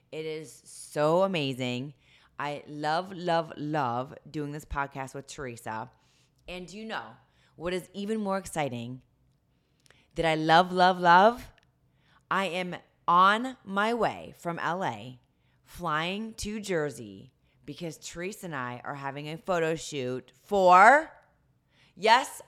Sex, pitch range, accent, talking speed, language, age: female, 140-190 Hz, American, 130 wpm, English, 30-49